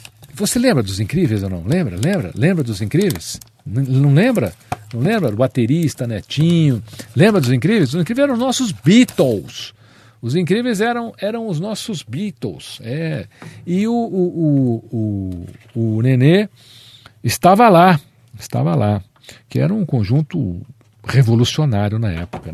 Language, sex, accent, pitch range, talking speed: Portuguese, male, Brazilian, 100-135 Hz, 145 wpm